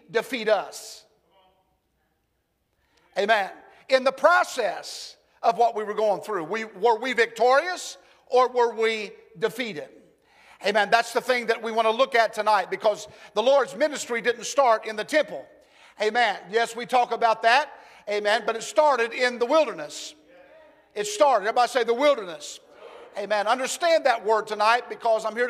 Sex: male